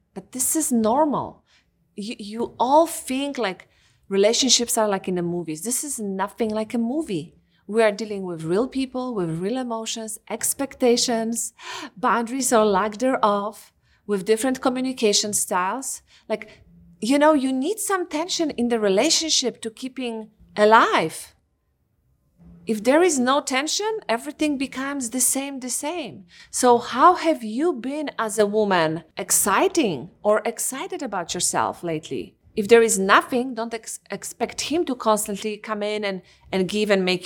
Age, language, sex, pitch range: 40-59, English, female, 205-270 Hz